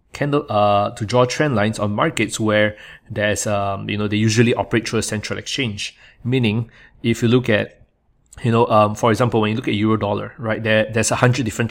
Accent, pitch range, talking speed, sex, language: Malaysian, 105-125 Hz, 210 wpm, male, English